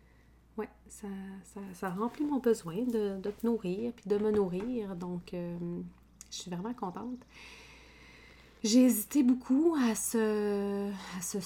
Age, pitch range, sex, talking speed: 30-49, 175-225 Hz, female, 135 wpm